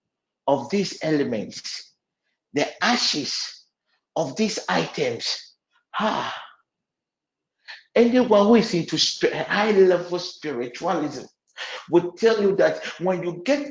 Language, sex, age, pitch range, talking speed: English, male, 50-69, 165-235 Hz, 100 wpm